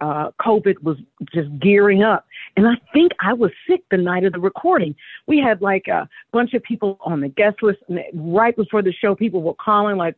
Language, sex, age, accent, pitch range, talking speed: English, female, 50-69, American, 190-245 Hz, 220 wpm